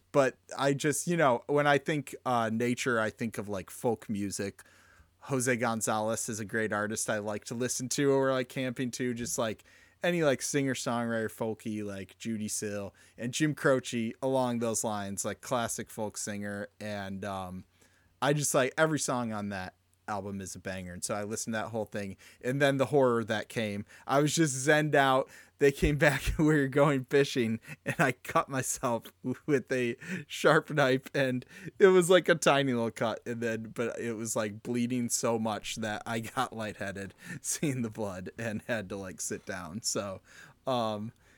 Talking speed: 185 wpm